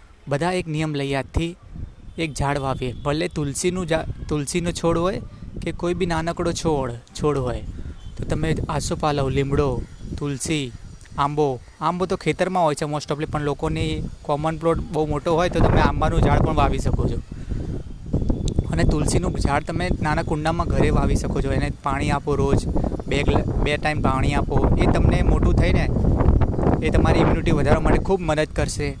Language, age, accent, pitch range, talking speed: Gujarati, 20-39, native, 130-155 Hz, 135 wpm